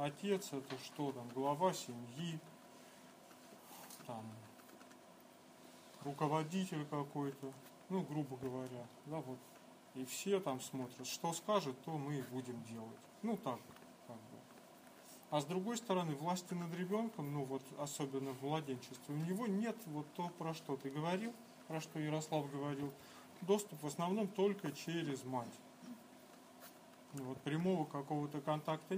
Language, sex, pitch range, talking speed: Russian, male, 135-185 Hz, 135 wpm